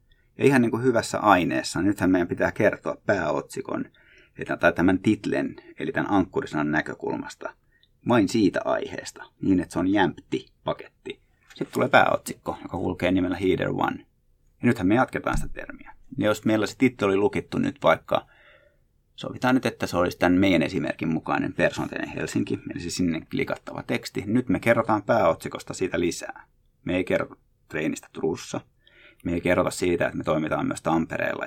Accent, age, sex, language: native, 30-49, male, Finnish